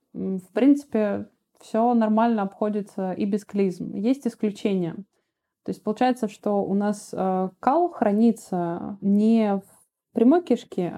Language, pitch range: Russian, 195-240 Hz